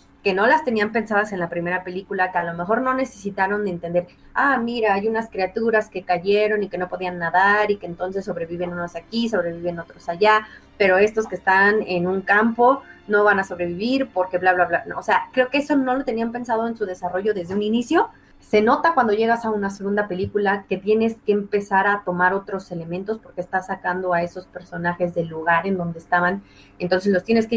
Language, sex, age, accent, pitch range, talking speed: Spanish, female, 30-49, Mexican, 180-220 Hz, 220 wpm